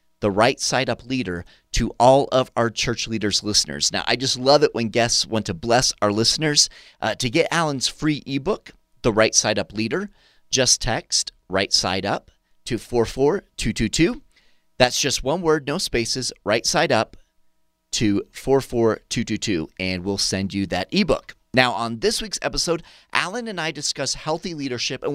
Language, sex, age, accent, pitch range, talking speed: English, male, 30-49, American, 105-145 Hz, 190 wpm